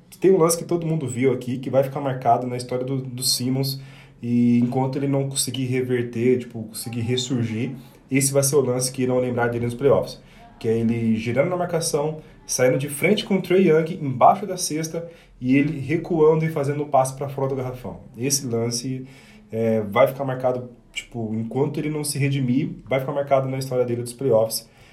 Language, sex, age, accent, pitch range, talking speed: Portuguese, male, 20-39, Brazilian, 120-140 Hz, 205 wpm